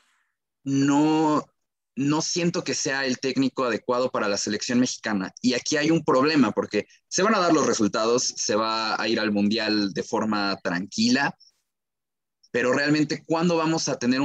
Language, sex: English, male